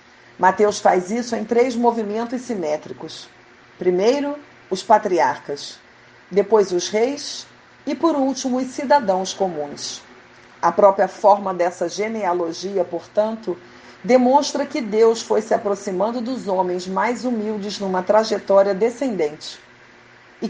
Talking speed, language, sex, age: 115 wpm, Portuguese, female, 40-59